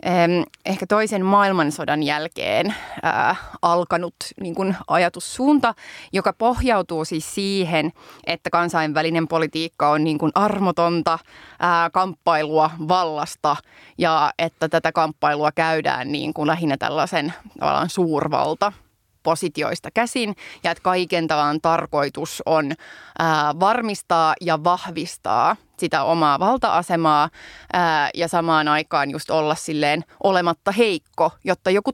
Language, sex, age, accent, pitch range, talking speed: Finnish, female, 20-39, native, 155-180 Hz, 110 wpm